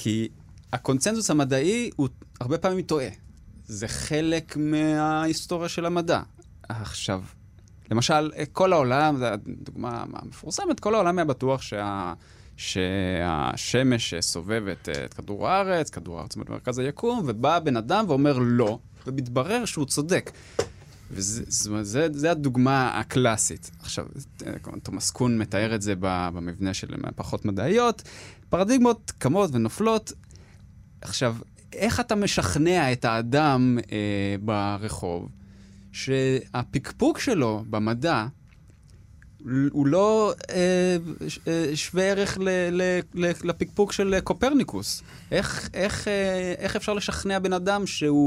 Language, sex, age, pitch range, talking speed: Hebrew, male, 20-39, 105-165 Hz, 110 wpm